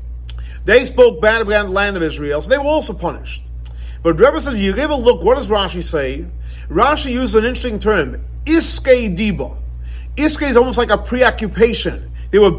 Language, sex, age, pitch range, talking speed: English, male, 40-59, 155-260 Hz, 185 wpm